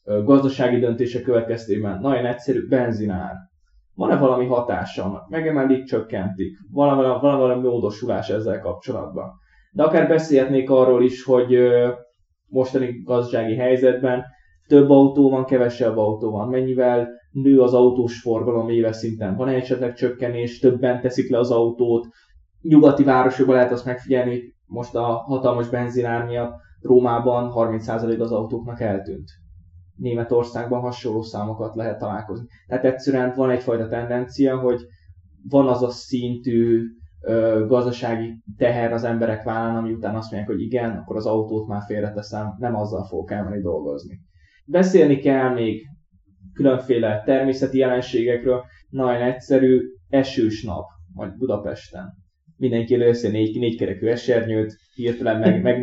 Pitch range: 110-130 Hz